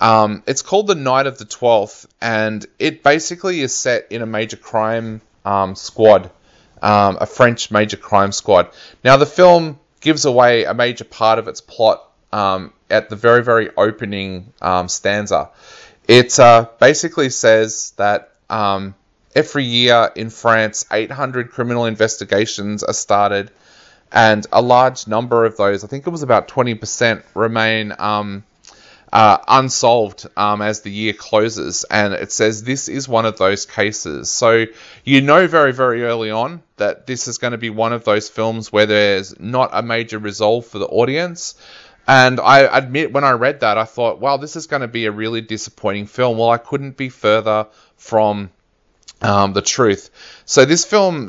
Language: English